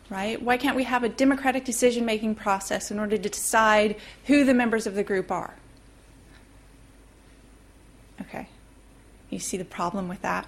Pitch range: 195-255 Hz